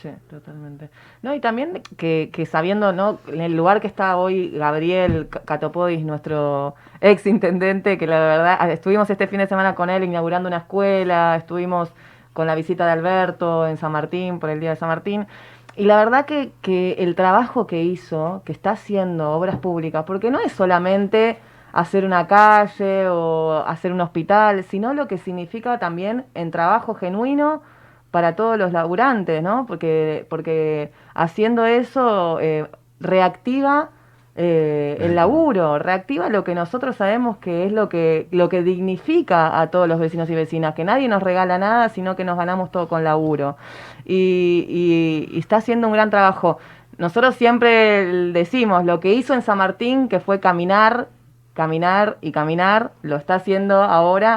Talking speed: 165 wpm